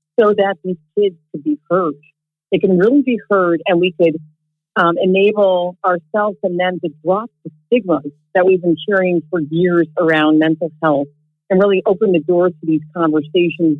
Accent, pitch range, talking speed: American, 155-190 Hz, 180 wpm